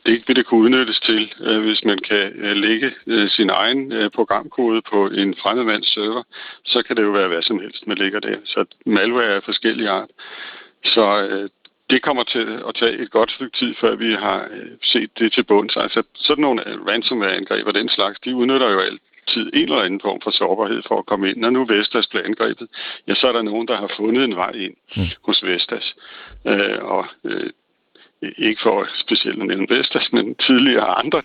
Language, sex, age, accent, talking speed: Danish, male, 60-79, native, 180 wpm